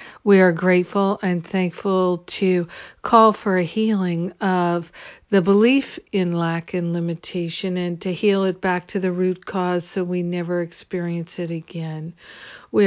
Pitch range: 170-195 Hz